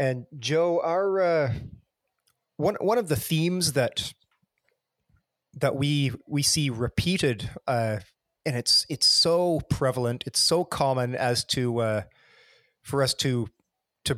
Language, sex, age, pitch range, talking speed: English, male, 30-49, 115-140 Hz, 130 wpm